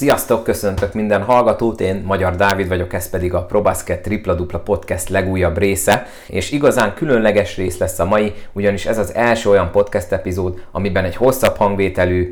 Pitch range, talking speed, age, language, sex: 90-100 Hz, 170 wpm, 30-49, Hungarian, male